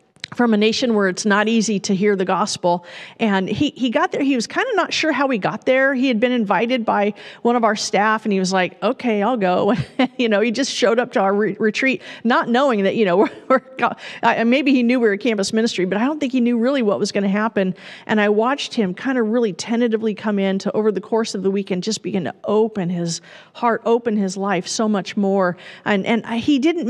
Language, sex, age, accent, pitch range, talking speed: English, female, 50-69, American, 190-235 Hz, 255 wpm